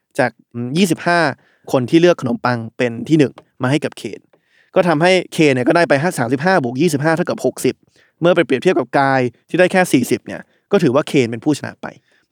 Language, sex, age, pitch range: Thai, male, 20-39, 135-175 Hz